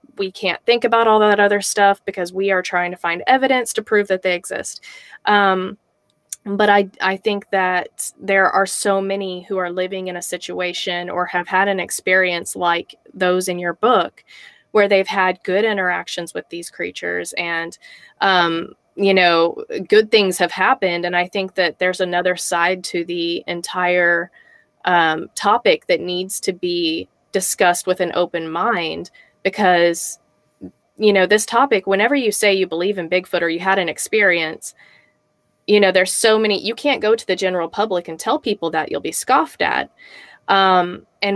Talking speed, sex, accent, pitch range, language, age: 175 wpm, female, American, 180-205 Hz, English, 20-39